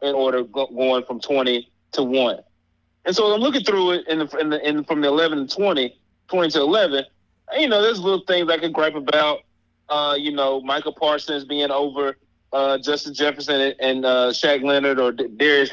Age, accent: 30-49, American